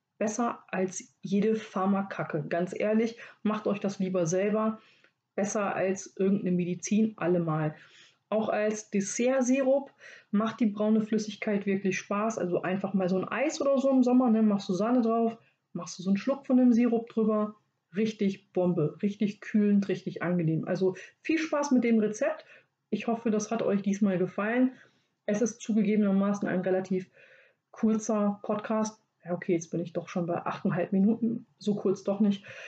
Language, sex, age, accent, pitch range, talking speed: German, female, 30-49, German, 185-220 Hz, 160 wpm